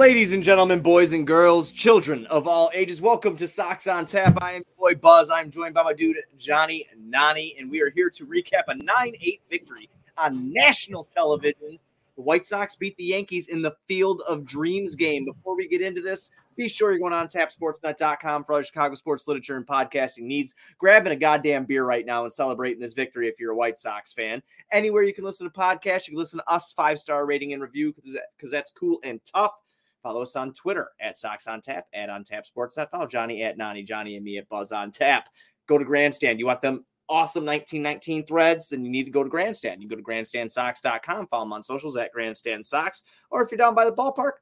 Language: English